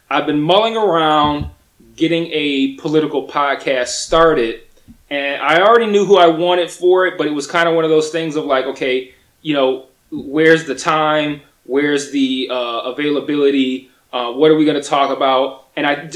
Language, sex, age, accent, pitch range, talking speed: English, male, 20-39, American, 135-165 Hz, 180 wpm